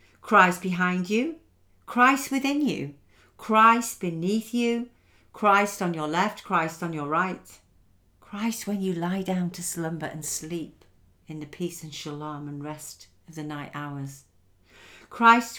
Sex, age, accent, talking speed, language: female, 50-69, British, 145 wpm, English